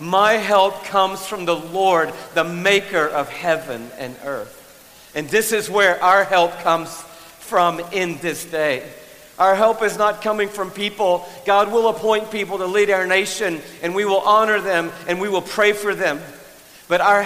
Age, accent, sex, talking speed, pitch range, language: 50-69, American, male, 175 wpm, 170-200 Hz, English